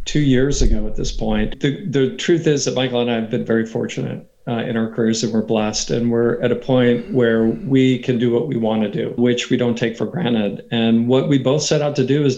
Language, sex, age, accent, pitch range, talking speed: English, male, 50-69, American, 115-125 Hz, 260 wpm